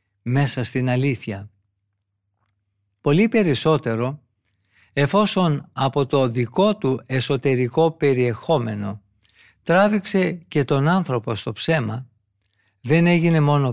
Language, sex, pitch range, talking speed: Greek, male, 105-155 Hz, 90 wpm